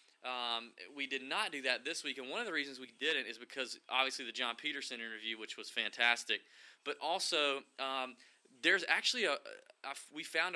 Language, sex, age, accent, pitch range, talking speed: English, male, 20-39, American, 120-155 Hz, 195 wpm